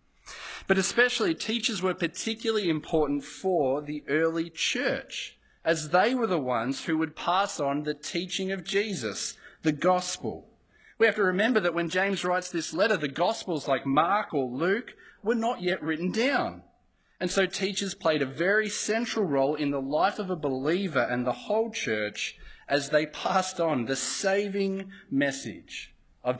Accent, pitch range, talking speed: Australian, 135-190 Hz, 165 wpm